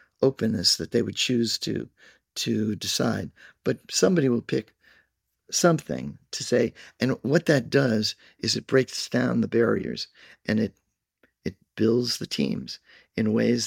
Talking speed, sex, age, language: 145 wpm, male, 50-69, English